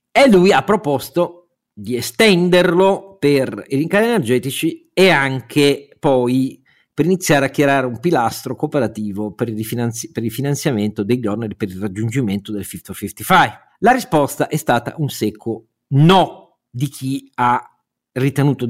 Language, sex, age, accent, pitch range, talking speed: Italian, male, 50-69, native, 110-150 Hz, 145 wpm